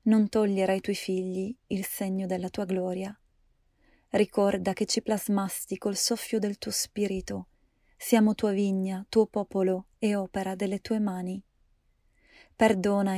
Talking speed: 135 wpm